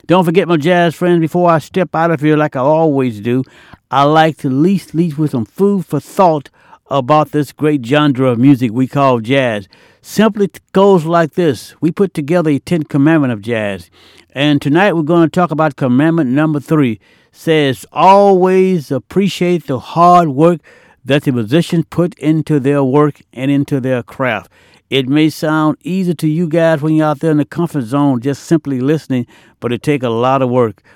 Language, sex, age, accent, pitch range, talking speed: English, male, 60-79, American, 130-170 Hz, 190 wpm